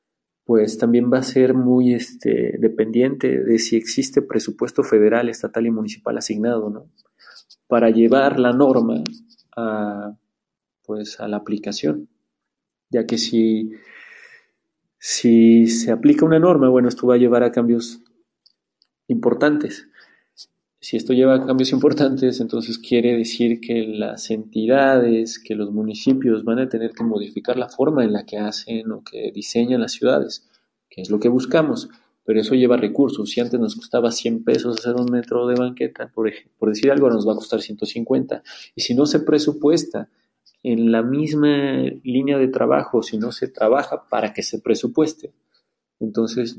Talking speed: 160 wpm